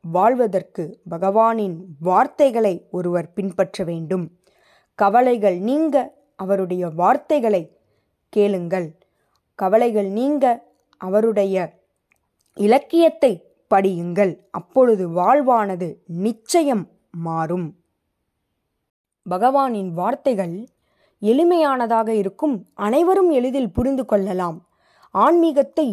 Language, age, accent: Tamil, 20-39, native